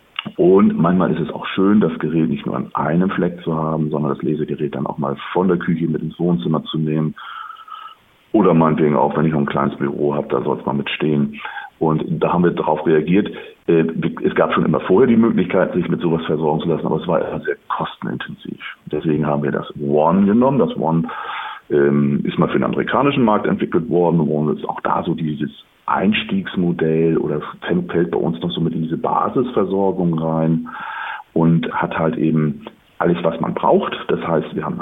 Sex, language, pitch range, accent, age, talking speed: male, German, 75-95 Hz, German, 40-59, 200 wpm